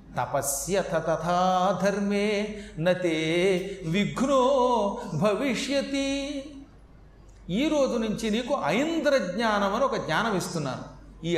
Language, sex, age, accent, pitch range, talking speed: Telugu, male, 40-59, native, 175-230 Hz, 80 wpm